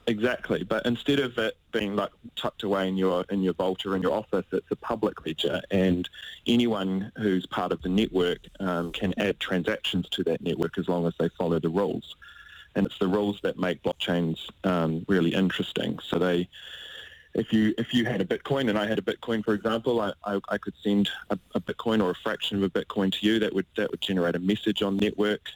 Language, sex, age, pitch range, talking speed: English, male, 20-39, 90-110 Hz, 220 wpm